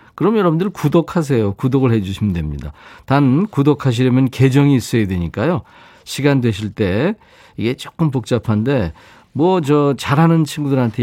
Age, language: 40-59, Korean